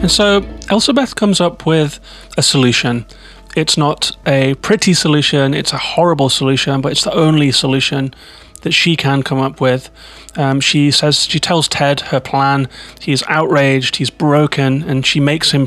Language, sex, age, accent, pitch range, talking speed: English, male, 30-49, British, 135-155 Hz, 170 wpm